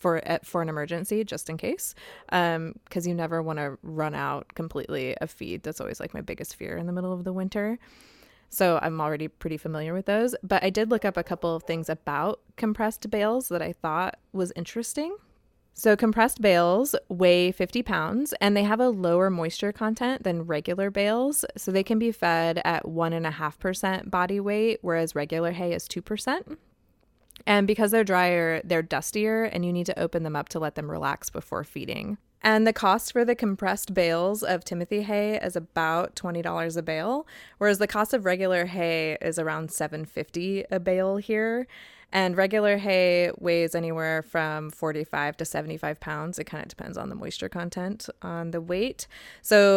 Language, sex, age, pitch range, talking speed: English, female, 20-39, 165-210 Hz, 190 wpm